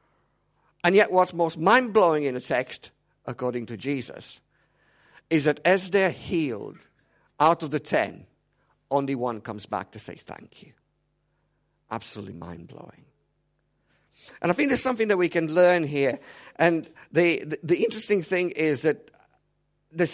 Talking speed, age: 145 wpm, 50-69